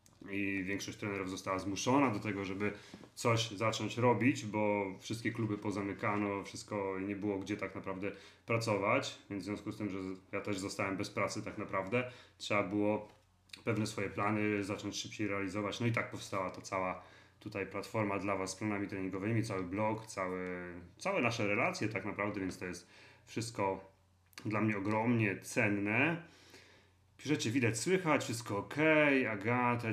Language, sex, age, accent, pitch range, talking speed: Polish, male, 30-49, native, 100-120 Hz, 155 wpm